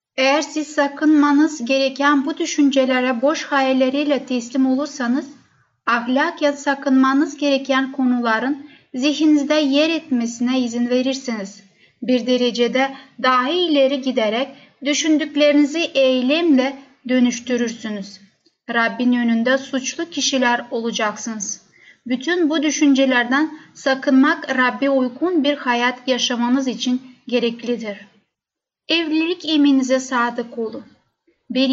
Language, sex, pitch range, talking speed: Turkish, female, 245-290 Hz, 95 wpm